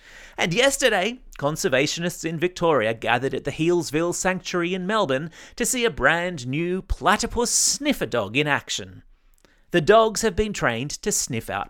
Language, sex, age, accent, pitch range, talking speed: English, male, 30-49, Australian, 135-210 Hz, 155 wpm